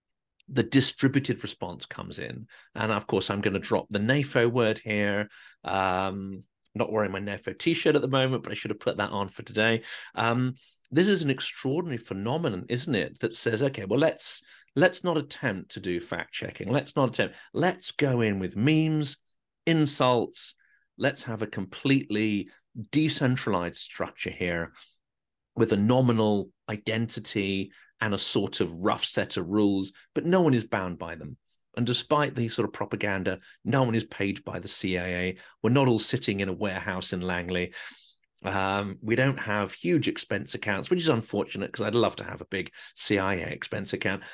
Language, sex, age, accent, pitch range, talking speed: English, male, 40-59, British, 100-130 Hz, 175 wpm